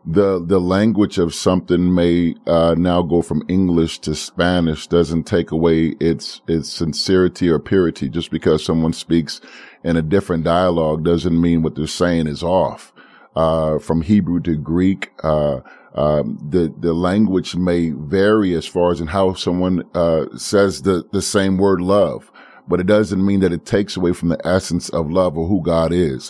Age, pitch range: 30-49, 85-100 Hz